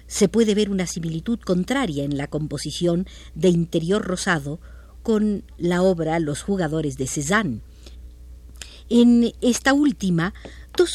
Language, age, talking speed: Spanish, 50-69, 125 wpm